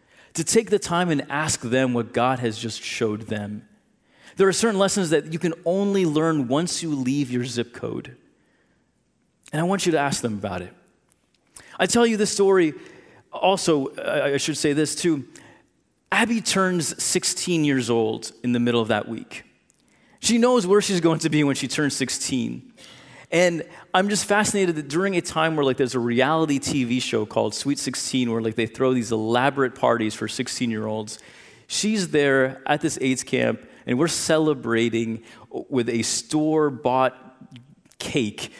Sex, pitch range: male, 120-175 Hz